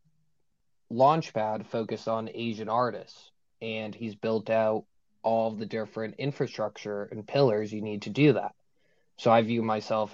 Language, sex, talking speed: English, male, 140 wpm